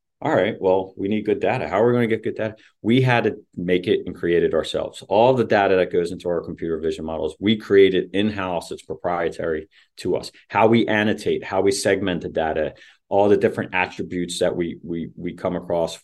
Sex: male